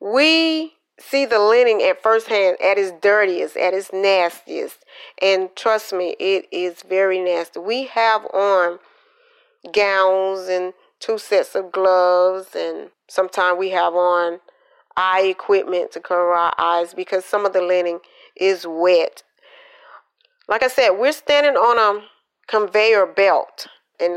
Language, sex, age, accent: English, female, 40-59, American